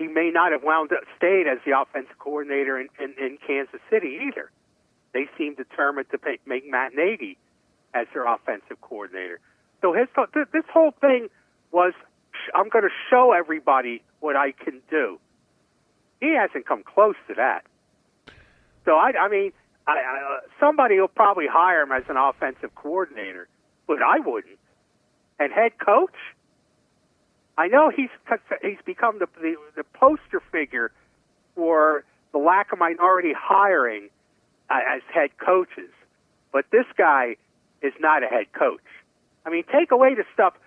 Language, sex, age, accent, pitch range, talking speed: English, male, 60-79, American, 160-265 Hz, 145 wpm